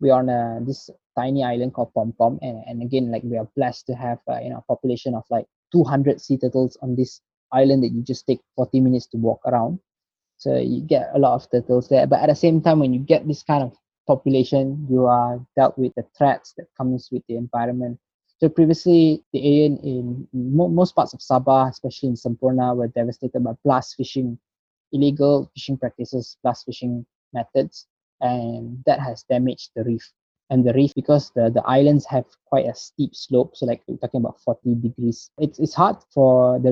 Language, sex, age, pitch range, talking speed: English, male, 20-39, 125-140 Hz, 200 wpm